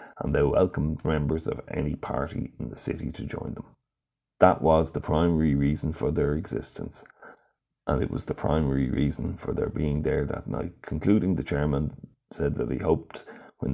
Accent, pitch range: Irish, 70-85 Hz